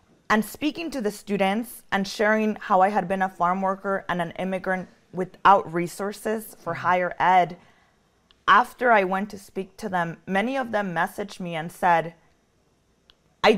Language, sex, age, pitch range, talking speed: English, female, 20-39, 175-205 Hz, 165 wpm